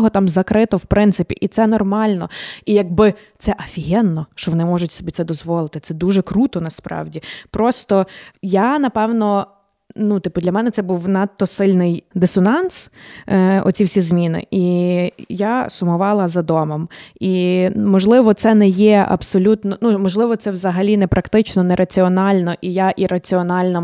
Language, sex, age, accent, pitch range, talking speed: Ukrainian, female, 20-39, native, 175-210 Hz, 155 wpm